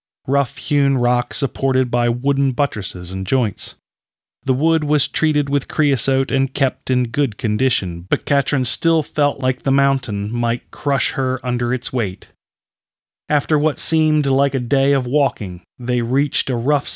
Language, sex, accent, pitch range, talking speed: English, male, American, 120-145 Hz, 155 wpm